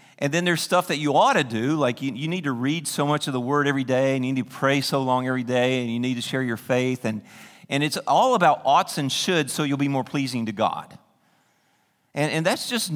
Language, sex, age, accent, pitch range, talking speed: English, male, 40-59, American, 135-190 Hz, 265 wpm